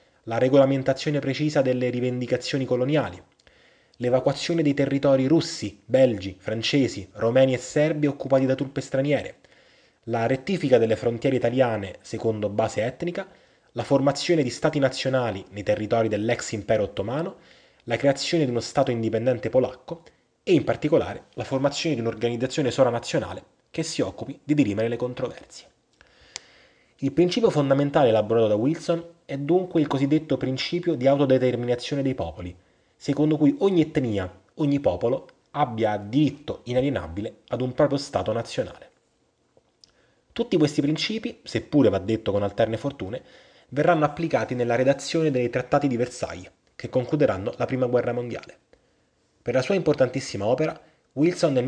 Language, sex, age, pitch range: Italian, male, 20-39, 120-150 Hz